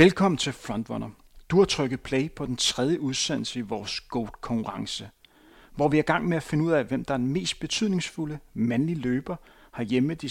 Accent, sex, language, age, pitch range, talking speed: native, male, Danish, 30-49, 120-160 Hz, 205 wpm